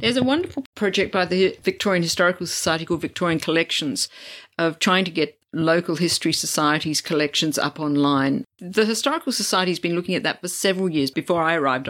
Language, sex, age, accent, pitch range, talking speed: English, female, 50-69, Australian, 160-190 Hz, 180 wpm